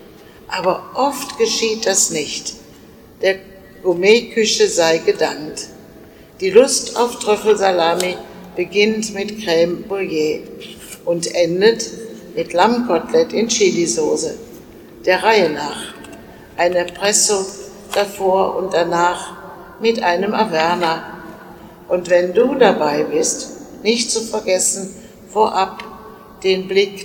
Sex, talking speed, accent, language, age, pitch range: female, 100 wpm, German, German, 60-79, 180-215 Hz